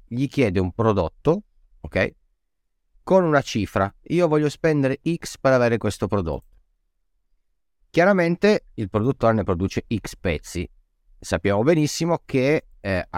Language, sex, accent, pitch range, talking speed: Italian, male, native, 90-130 Hz, 125 wpm